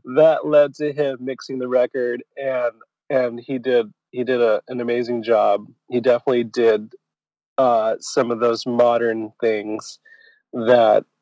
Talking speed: 145 wpm